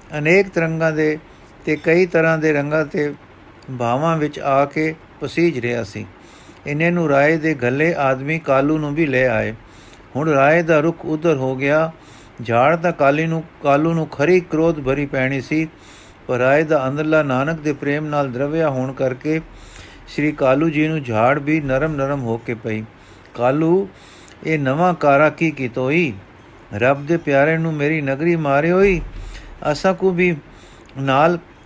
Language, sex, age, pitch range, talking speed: Punjabi, male, 50-69, 130-170 Hz, 165 wpm